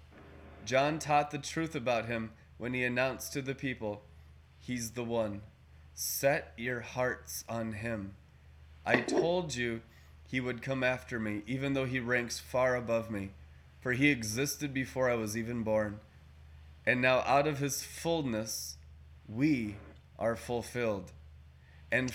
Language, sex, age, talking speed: English, male, 20-39, 145 wpm